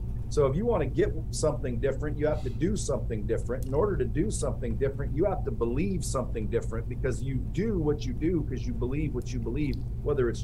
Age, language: 40-59, English